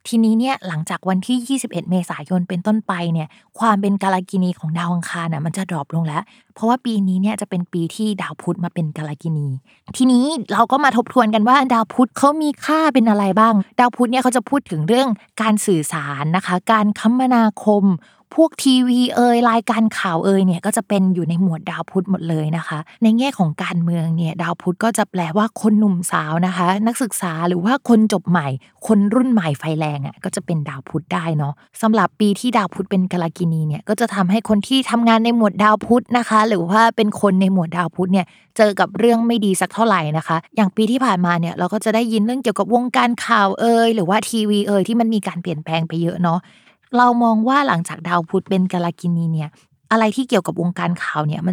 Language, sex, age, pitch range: Thai, female, 20-39, 175-230 Hz